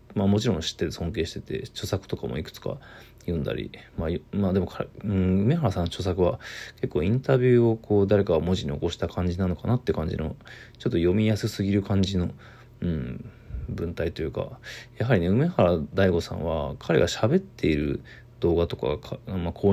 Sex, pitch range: male, 90-120 Hz